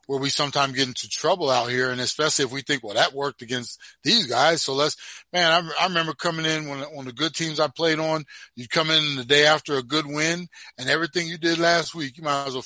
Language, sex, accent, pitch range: English, male, American, 130-155 Hz